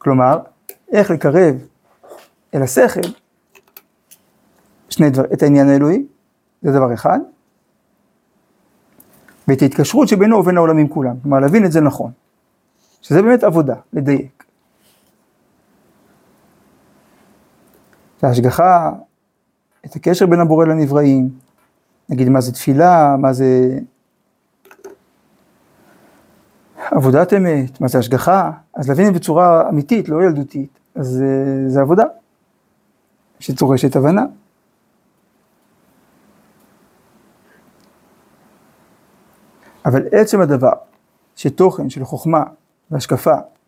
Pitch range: 135-185 Hz